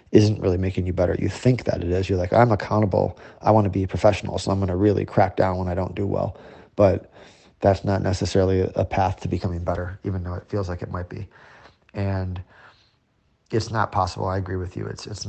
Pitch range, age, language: 95-105 Hz, 30-49, English